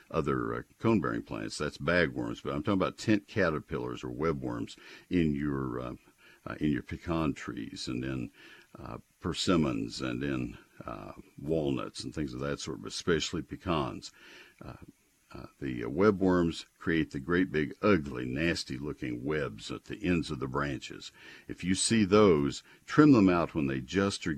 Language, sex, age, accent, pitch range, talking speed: English, male, 60-79, American, 65-85 Hz, 165 wpm